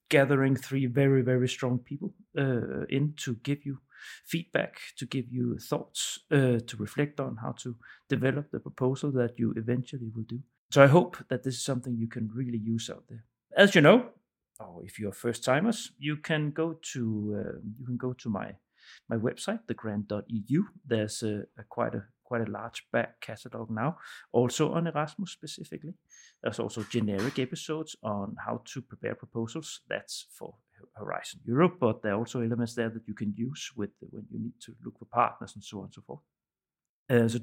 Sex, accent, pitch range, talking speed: male, Danish, 115-155 Hz, 185 wpm